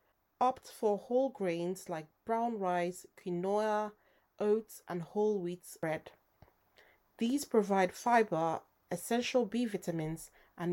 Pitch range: 170-225 Hz